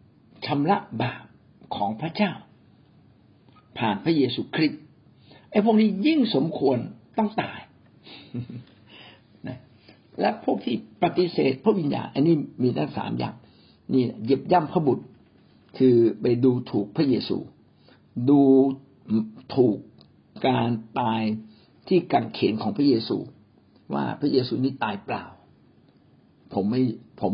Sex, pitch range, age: male, 115-180 Hz, 60-79